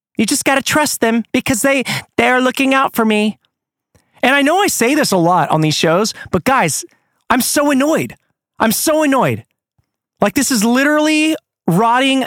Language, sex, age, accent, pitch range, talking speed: English, male, 30-49, American, 180-270 Hz, 185 wpm